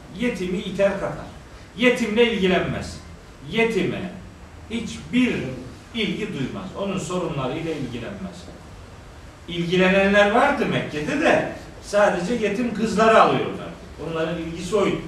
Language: Turkish